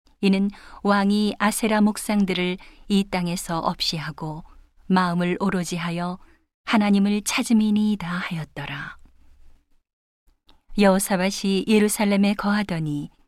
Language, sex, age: Korean, female, 40-59